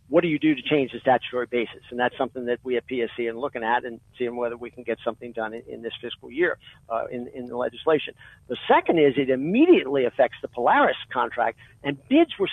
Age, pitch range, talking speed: 50-69, 125-170 Hz, 235 wpm